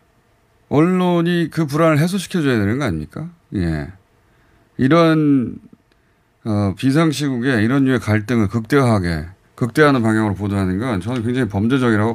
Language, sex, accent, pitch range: Korean, male, native, 105-135 Hz